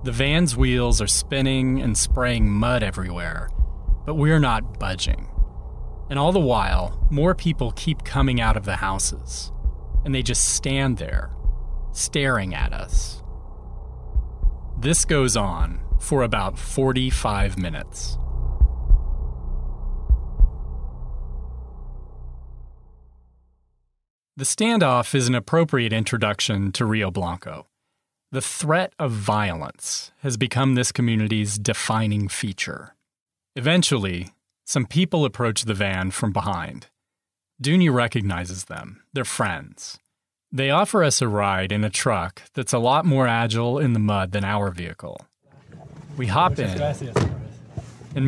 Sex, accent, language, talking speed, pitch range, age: male, American, English, 120 wpm, 80-130 Hz, 30-49